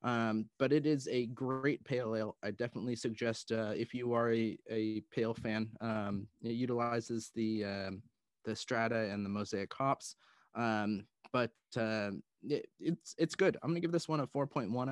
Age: 20-39